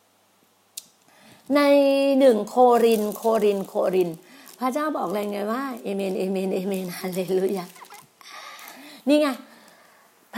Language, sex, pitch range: Thai, female, 230-300 Hz